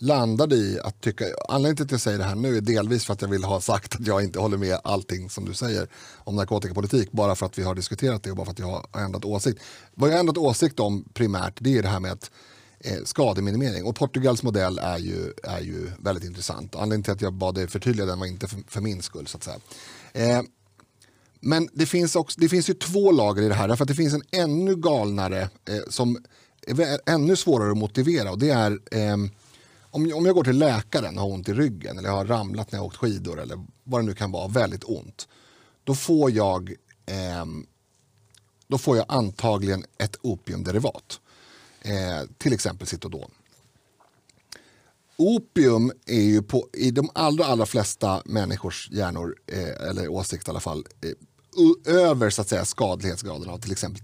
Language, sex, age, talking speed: Swedish, male, 30-49, 205 wpm